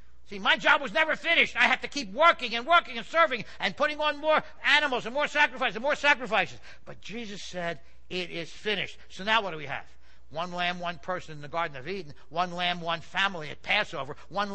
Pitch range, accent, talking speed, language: 165-230 Hz, American, 225 wpm, English